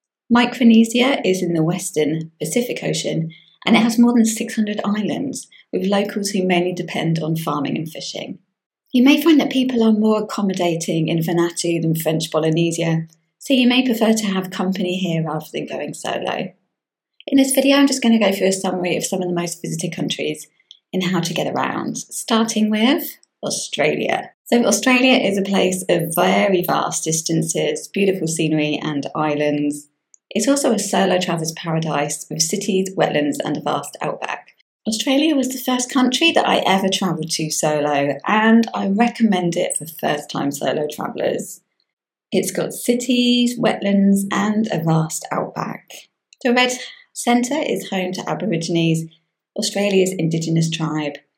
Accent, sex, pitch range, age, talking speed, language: British, female, 165-225 Hz, 20-39, 160 wpm, English